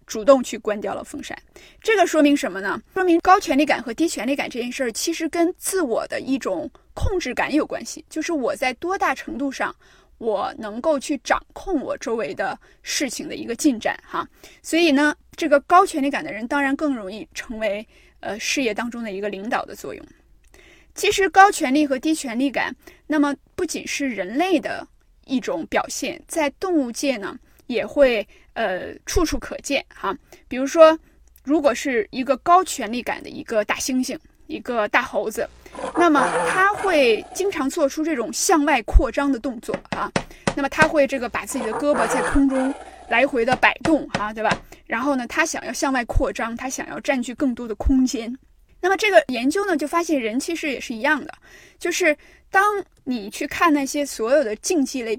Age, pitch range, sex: 20-39, 255-325 Hz, female